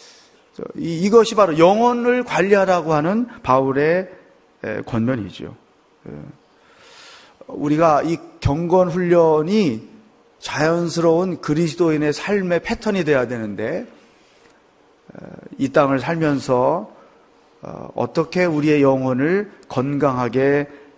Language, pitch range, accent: Korean, 140-185 Hz, native